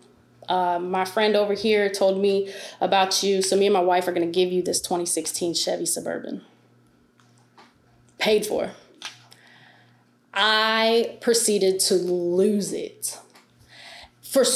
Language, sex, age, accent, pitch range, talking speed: English, female, 20-39, American, 175-210 Hz, 130 wpm